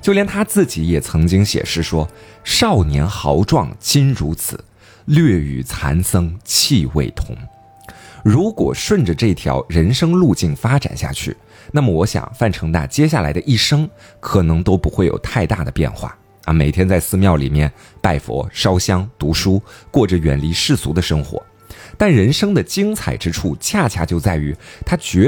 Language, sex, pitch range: Chinese, male, 80-130 Hz